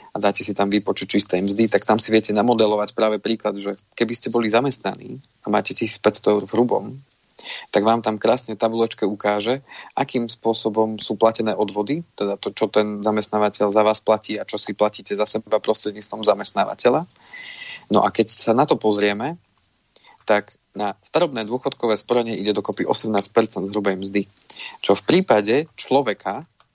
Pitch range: 105-120 Hz